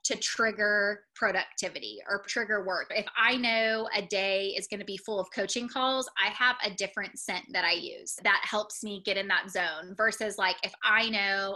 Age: 20-39